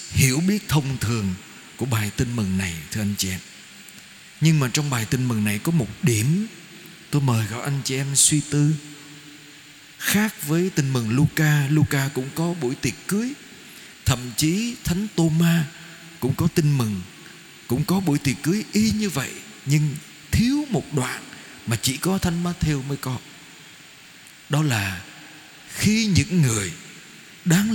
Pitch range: 120-175 Hz